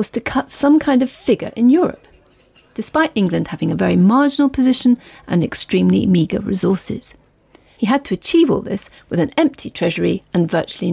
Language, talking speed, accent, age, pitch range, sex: English, 175 wpm, British, 40-59, 185-265 Hz, female